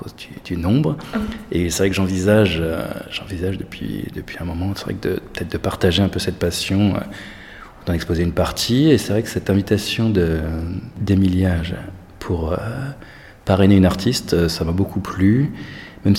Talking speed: 180 wpm